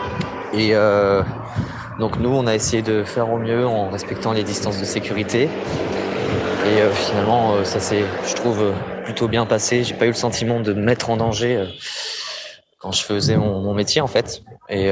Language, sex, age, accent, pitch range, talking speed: French, male, 20-39, French, 100-115 Hz, 195 wpm